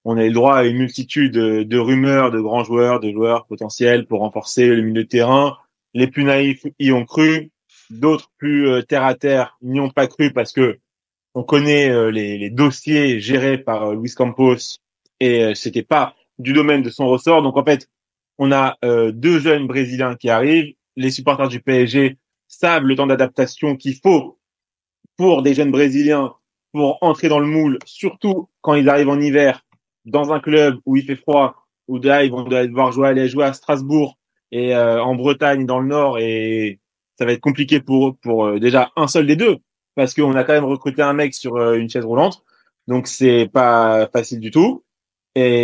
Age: 20-39